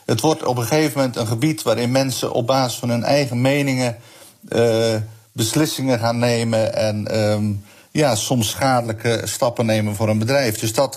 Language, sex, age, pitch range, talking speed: Dutch, male, 50-69, 110-135 Hz, 175 wpm